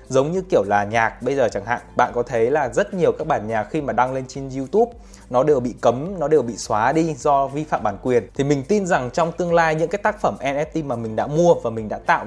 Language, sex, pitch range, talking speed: Vietnamese, male, 125-170 Hz, 285 wpm